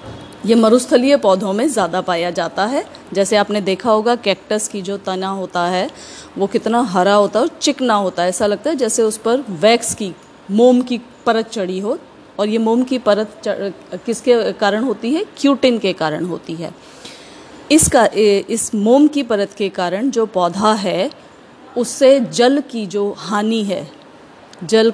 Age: 30-49